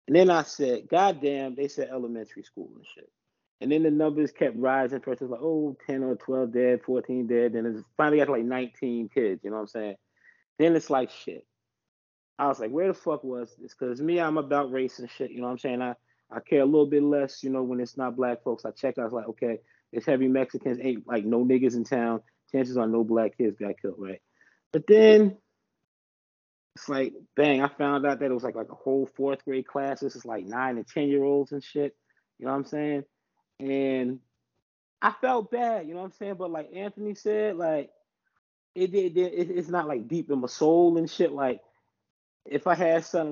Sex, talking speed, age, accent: male, 230 wpm, 20-39, American